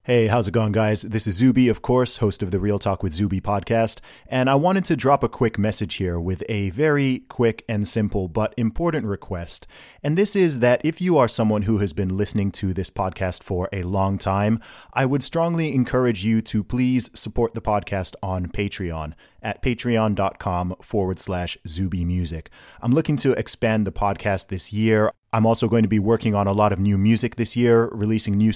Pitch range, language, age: 95-120 Hz, English, 30-49